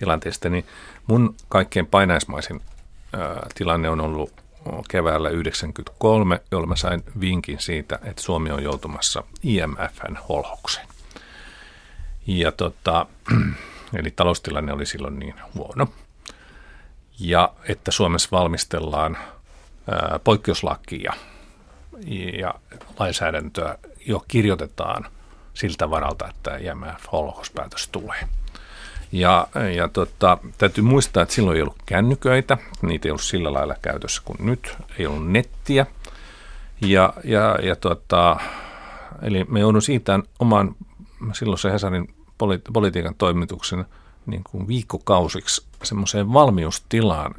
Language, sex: Finnish, male